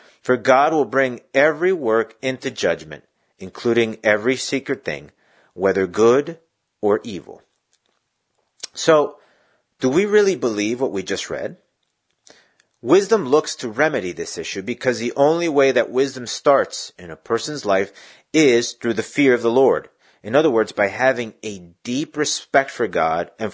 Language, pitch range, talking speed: English, 115-150 Hz, 155 wpm